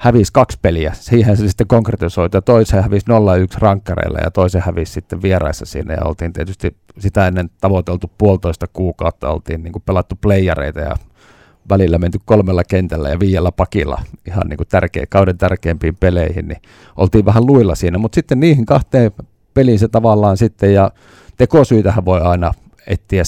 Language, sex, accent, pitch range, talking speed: Finnish, male, native, 90-110 Hz, 155 wpm